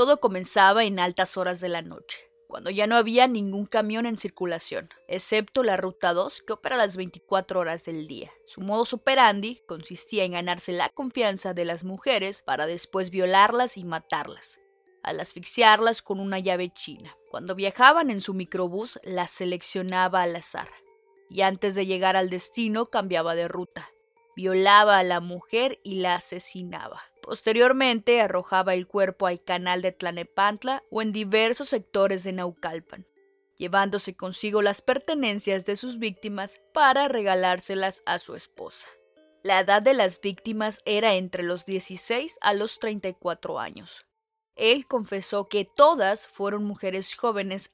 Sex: female